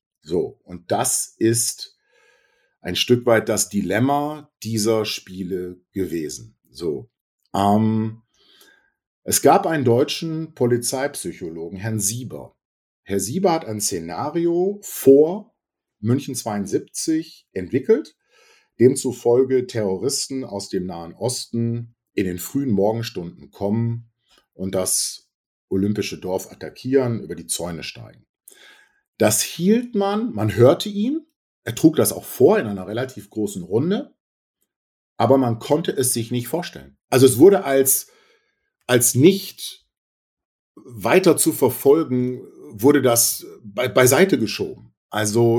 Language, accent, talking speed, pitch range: German, German, 115 wpm, 110-165 Hz